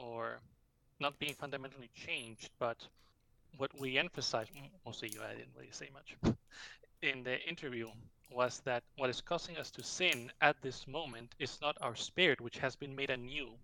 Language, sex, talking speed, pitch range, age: English, male, 160 wpm, 120-140 Hz, 20-39